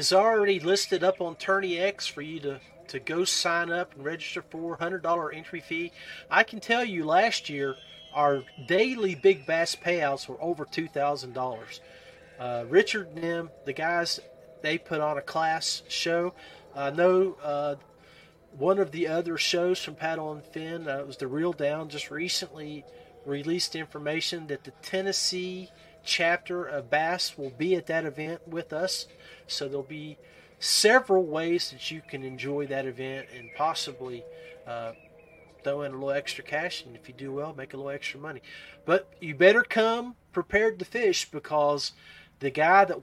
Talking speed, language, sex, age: 170 wpm, English, male, 40-59